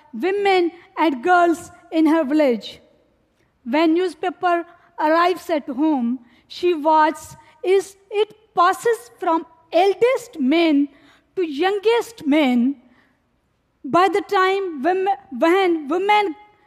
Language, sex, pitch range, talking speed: Portuguese, female, 295-375 Hz, 95 wpm